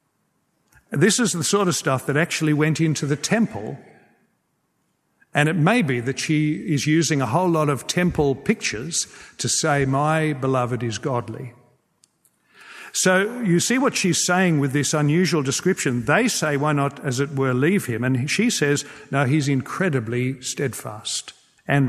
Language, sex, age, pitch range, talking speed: English, male, 50-69, 130-165 Hz, 160 wpm